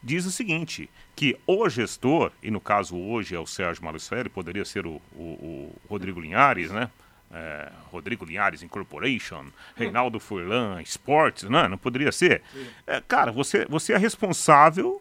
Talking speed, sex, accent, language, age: 155 wpm, male, Brazilian, Portuguese, 40-59